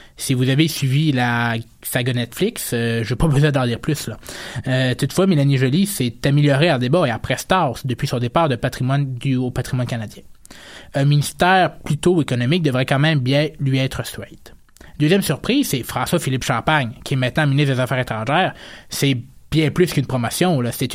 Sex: male